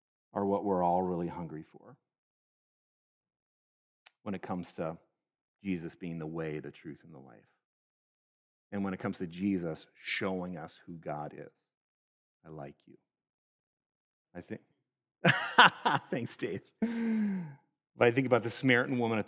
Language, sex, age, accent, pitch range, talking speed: English, male, 40-59, American, 85-105 Hz, 145 wpm